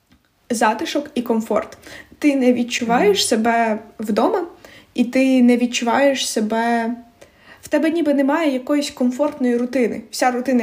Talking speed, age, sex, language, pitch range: 125 wpm, 20-39, female, Ukrainian, 230-280 Hz